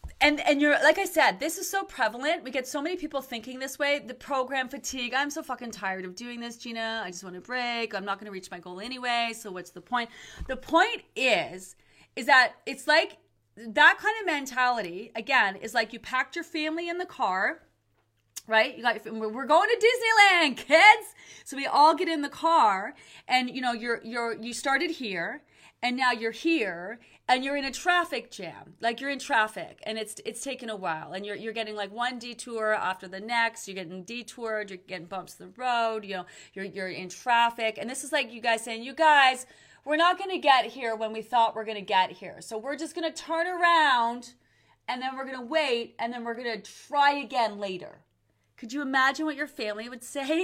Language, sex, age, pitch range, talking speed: English, female, 30-49, 220-295 Hz, 220 wpm